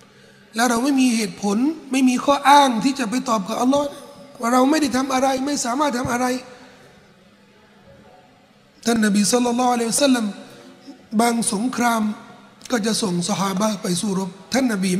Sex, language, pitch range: male, Thai, 200-250 Hz